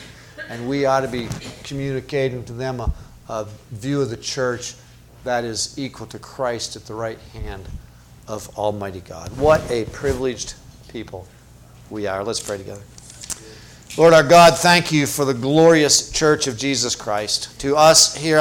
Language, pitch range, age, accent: English, 110-150 Hz, 50-69, American